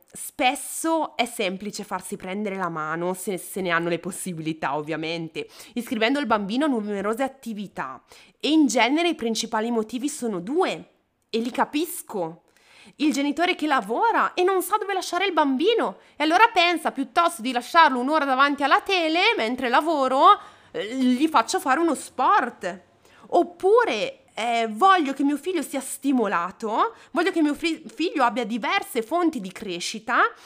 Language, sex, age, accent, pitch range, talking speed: Italian, female, 20-39, native, 210-315 Hz, 150 wpm